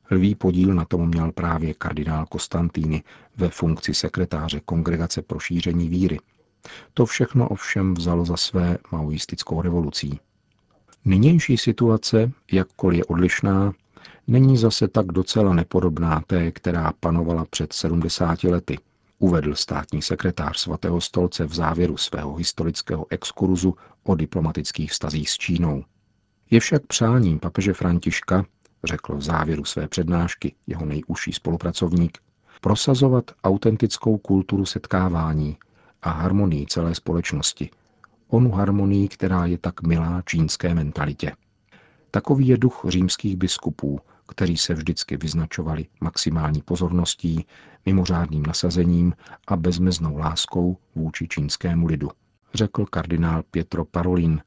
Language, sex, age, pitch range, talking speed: Czech, male, 50-69, 80-95 Hz, 115 wpm